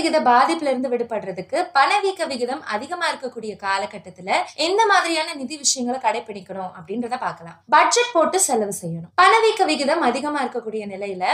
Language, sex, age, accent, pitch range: Tamil, female, 20-39, native, 220-330 Hz